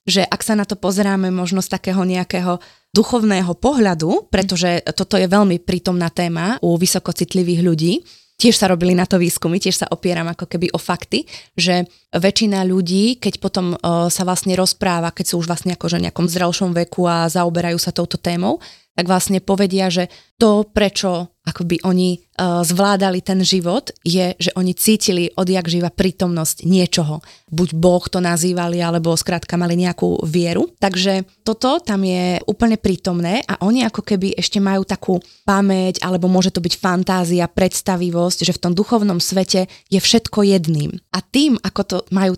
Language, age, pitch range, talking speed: Slovak, 20-39, 175-200 Hz, 170 wpm